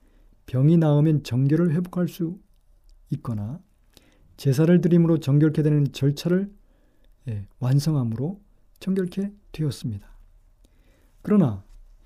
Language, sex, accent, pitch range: Korean, male, native, 130-180 Hz